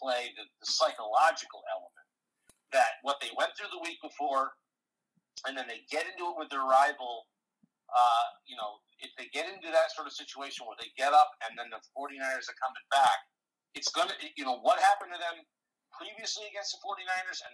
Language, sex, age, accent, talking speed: English, male, 50-69, American, 200 wpm